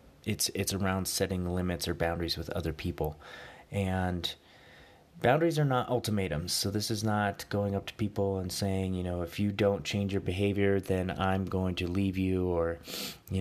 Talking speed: 185 wpm